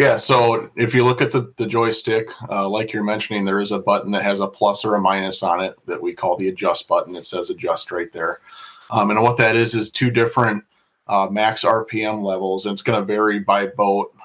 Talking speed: 235 wpm